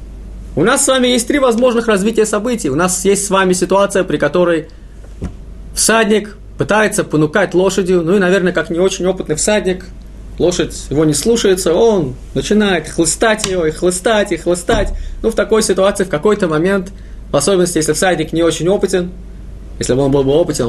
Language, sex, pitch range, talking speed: Russian, male, 165-220 Hz, 175 wpm